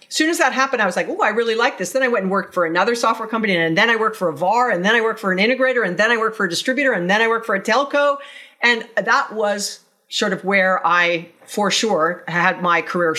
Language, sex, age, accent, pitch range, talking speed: English, female, 40-59, American, 185-250 Hz, 280 wpm